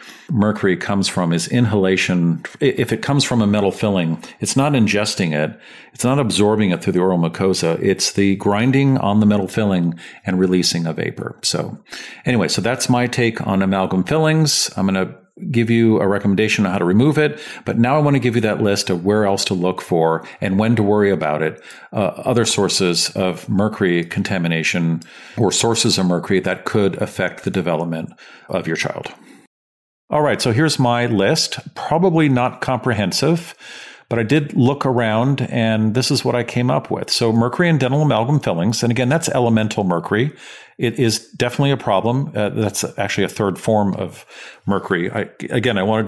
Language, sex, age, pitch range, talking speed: English, male, 50-69, 95-125 Hz, 190 wpm